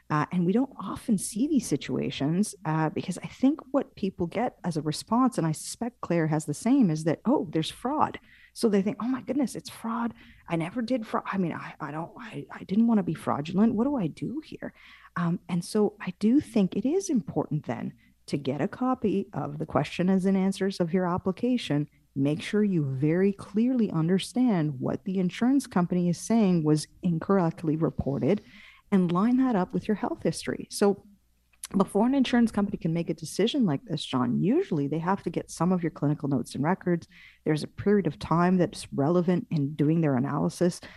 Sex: female